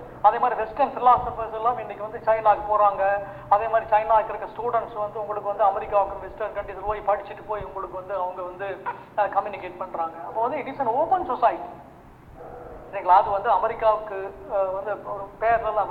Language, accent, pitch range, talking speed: Tamil, native, 200-225 Hz, 155 wpm